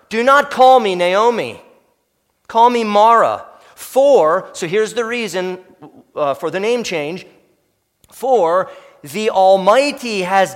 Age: 40-59